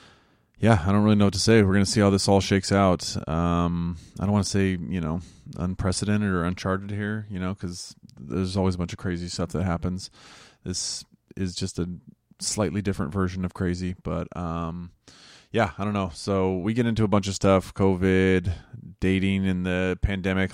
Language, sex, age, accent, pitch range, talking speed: English, male, 20-39, American, 90-105 Hz, 200 wpm